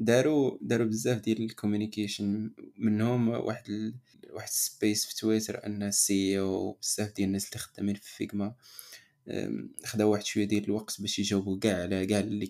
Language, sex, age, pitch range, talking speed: Arabic, male, 20-39, 105-125 Hz, 160 wpm